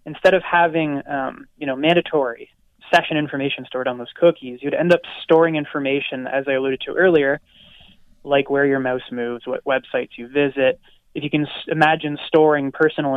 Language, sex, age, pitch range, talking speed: English, male, 20-39, 135-165 Hz, 175 wpm